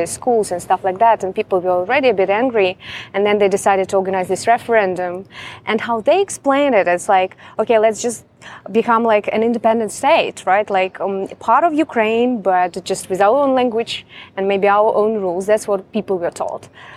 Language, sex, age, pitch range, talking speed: English, female, 20-39, 195-225 Hz, 200 wpm